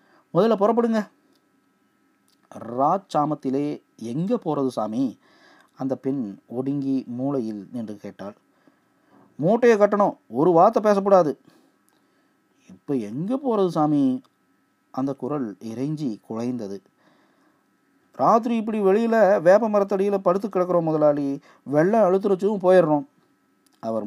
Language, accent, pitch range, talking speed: Tamil, native, 125-205 Hz, 95 wpm